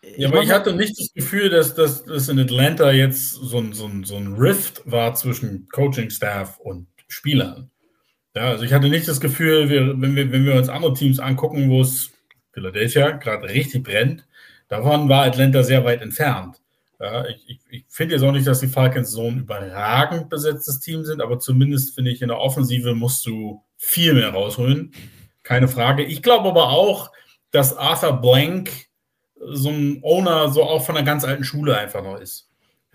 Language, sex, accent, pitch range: German, male, German, 125-145 Hz